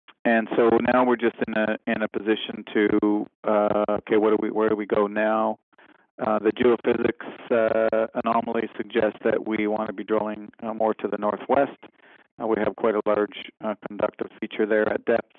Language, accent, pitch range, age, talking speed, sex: English, American, 105-115 Hz, 40-59, 190 wpm, male